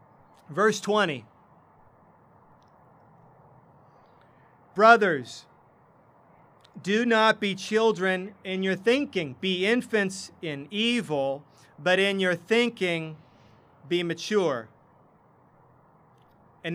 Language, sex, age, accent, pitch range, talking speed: English, male, 40-59, American, 165-205 Hz, 75 wpm